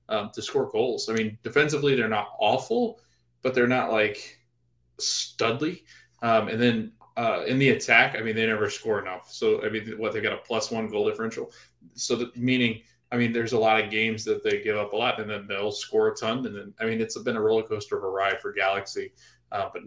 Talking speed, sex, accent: 235 wpm, male, American